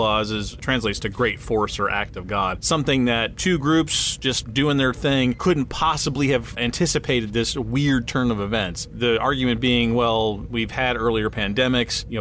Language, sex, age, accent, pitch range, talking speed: English, male, 30-49, American, 110-135 Hz, 175 wpm